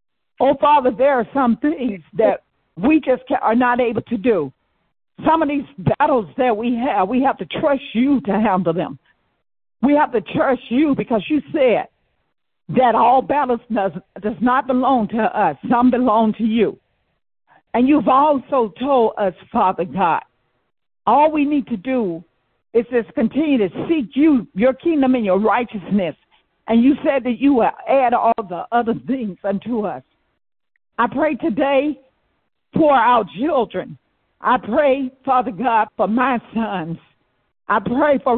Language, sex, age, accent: English, female, 60-79, American